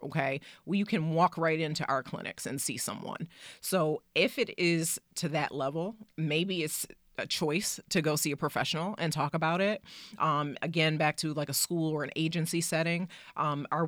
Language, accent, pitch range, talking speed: English, American, 145-180 Hz, 190 wpm